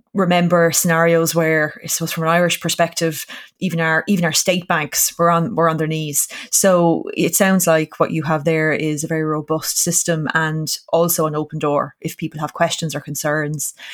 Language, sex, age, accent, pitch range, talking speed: English, female, 20-39, Irish, 160-195 Hz, 195 wpm